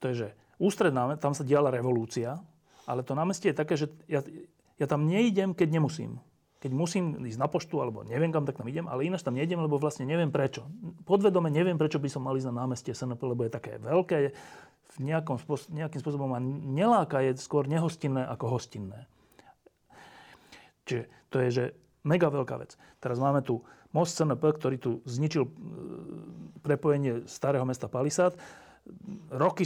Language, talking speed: Slovak, 170 wpm